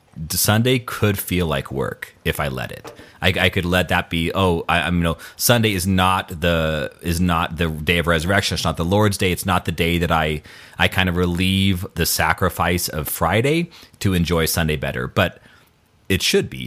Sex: male